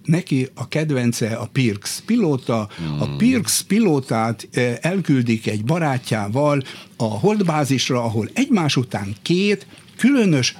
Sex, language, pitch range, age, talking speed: male, Hungarian, 120-185 Hz, 60-79, 110 wpm